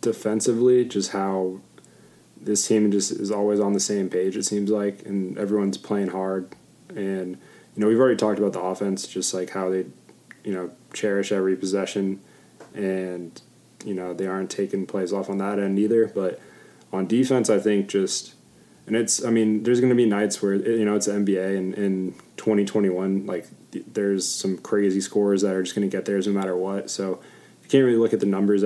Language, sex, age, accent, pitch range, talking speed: English, male, 20-39, American, 95-105 Hz, 200 wpm